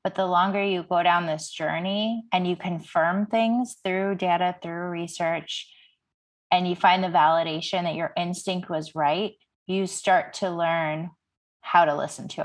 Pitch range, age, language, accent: 165-190 Hz, 20-39, English, American